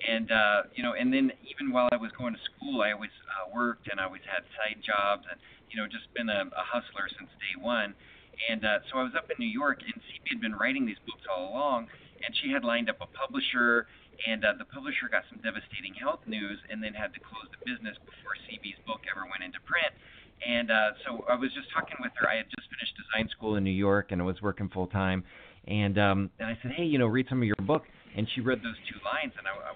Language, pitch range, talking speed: English, 100-120 Hz, 255 wpm